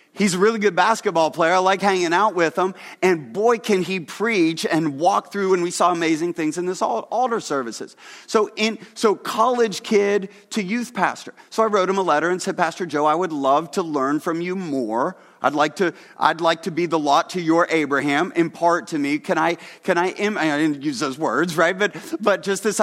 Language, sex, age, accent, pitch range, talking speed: English, male, 30-49, American, 165-205 Hz, 220 wpm